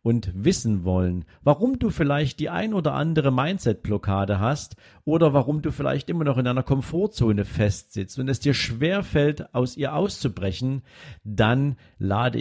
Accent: German